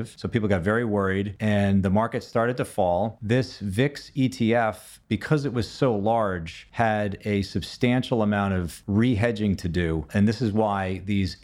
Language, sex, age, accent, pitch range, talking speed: English, male, 40-59, American, 95-115 Hz, 170 wpm